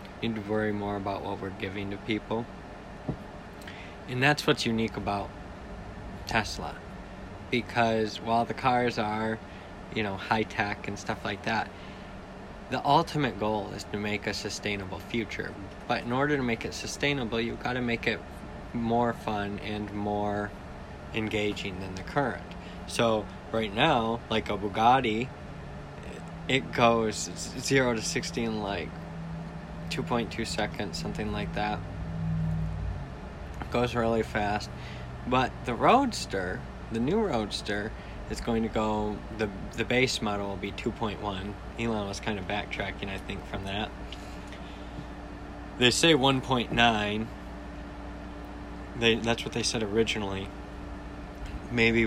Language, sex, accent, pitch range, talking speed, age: English, male, American, 95-115 Hz, 135 wpm, 20-39